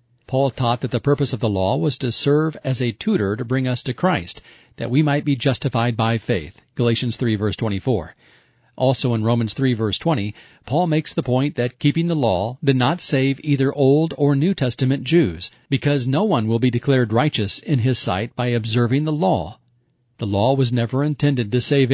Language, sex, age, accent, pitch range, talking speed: English, male, 40-59, American, 115-145 Hz, 200 wpm